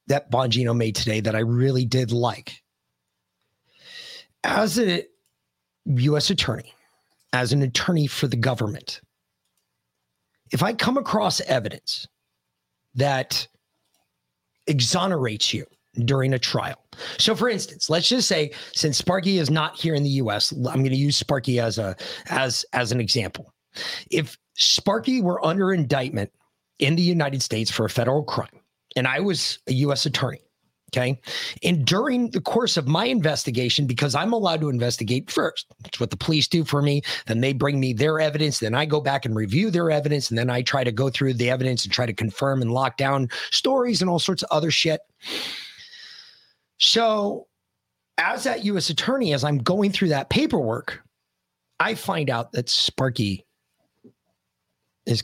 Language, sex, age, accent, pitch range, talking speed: English, male, 30-49, American, 115-160 Hz, 160 wpm